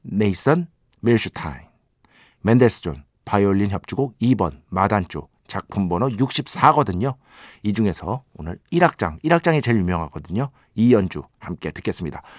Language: Korean